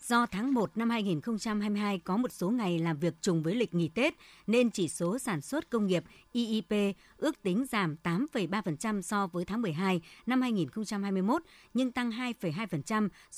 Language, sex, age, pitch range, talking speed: Vietnamese, male, 60-79, 170-225 Hz, 165 wpm